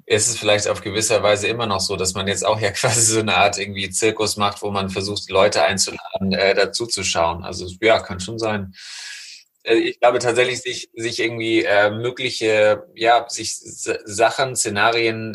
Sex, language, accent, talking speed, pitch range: male, German, German, 190 wpm, 100-115 Hz